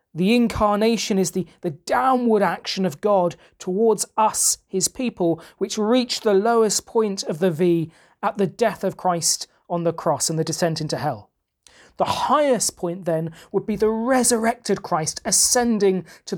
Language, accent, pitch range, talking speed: English, British, 165-220 Hz, 165 wpm